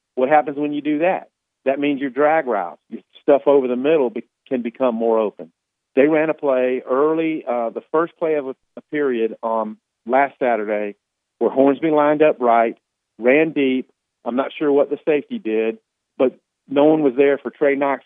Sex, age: male, 50-69